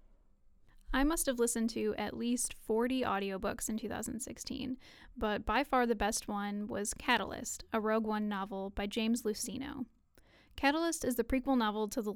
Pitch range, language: 215-250 Hz, English